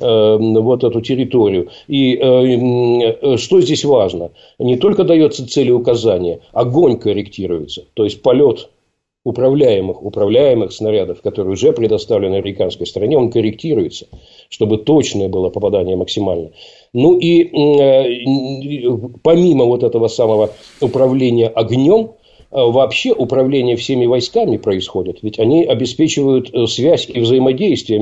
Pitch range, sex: 115-155 Hz, male